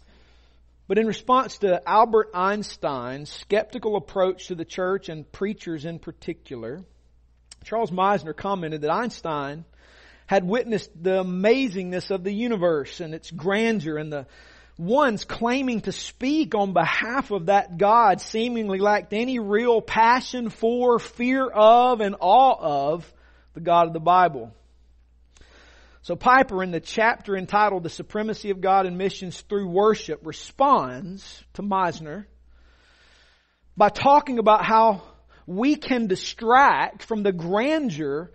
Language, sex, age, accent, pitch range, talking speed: English, male, 40-59, American, 160-225 Hz, 130 wpm